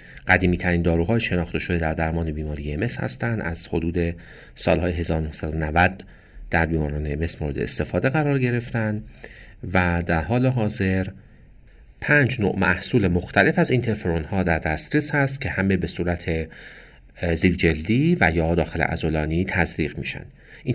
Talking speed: 135 wpm